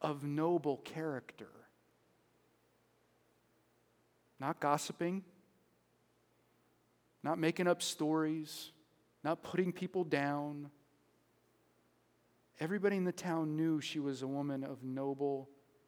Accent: American